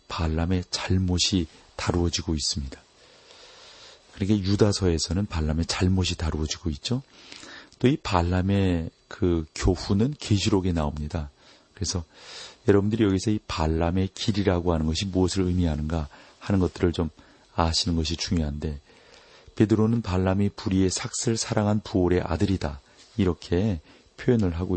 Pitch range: 85-105 Hz